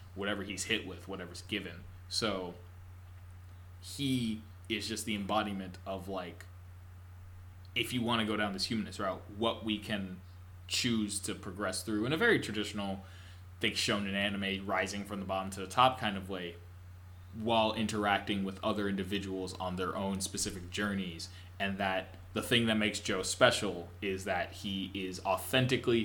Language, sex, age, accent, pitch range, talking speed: English, male, 20-39, American, 90-105 Hz, 165 wpm